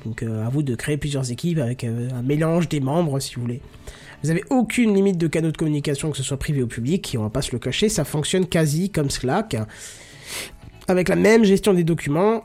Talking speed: 240 wpm